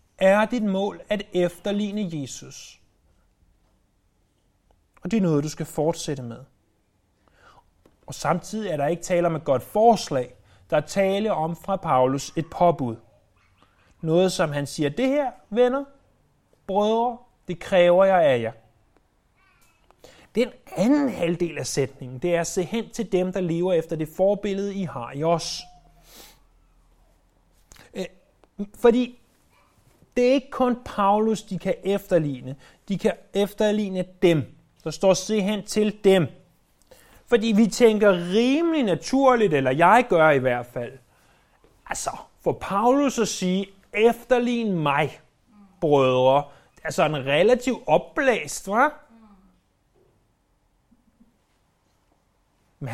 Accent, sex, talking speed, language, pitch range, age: native, male, 125 wpm, Danish, 140-210 Hz, 30-49